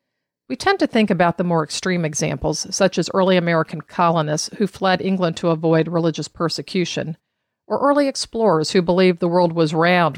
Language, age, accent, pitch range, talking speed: English, 50-69, American, 160-200 Hz, 175 wpm